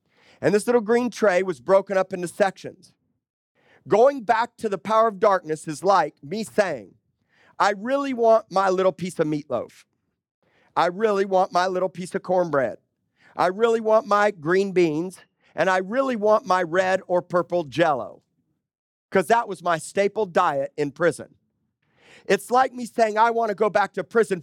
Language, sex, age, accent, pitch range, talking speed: English, male, 40-59, American, 185-235 Hz, 175 wpm